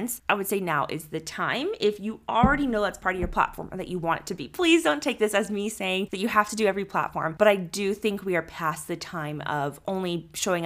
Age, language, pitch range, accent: 20-39, English, 165-215 Hz, American